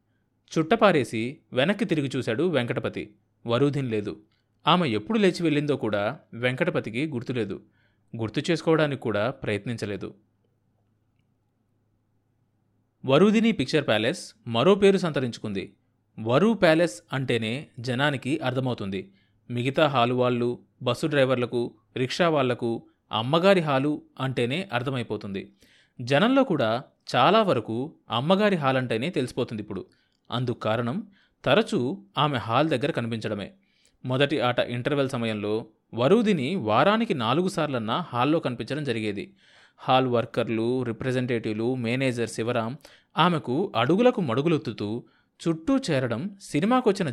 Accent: native